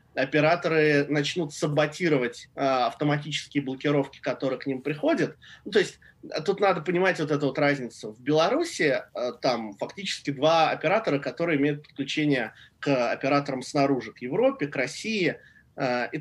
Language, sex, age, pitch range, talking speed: Russian, male, 20-39, 130-155 Hz, 135 wpm